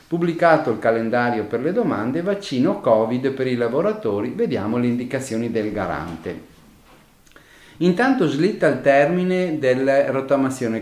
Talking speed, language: 120 wpm, Italian